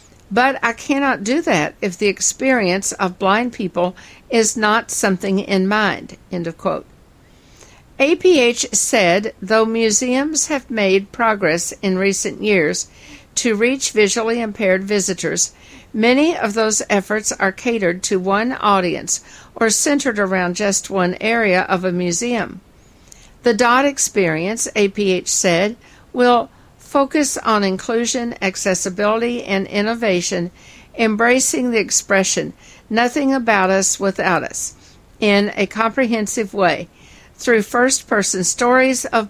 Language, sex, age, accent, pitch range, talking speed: English, female, 60-79, American, 195-240 Hz, 120 wpm